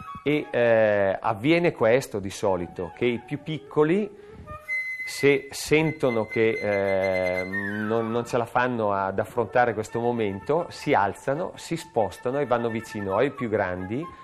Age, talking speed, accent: 40-59, 140 wpm, native